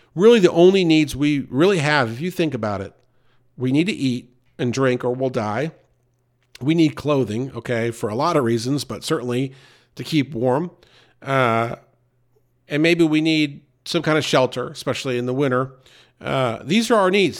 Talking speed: 185 wpm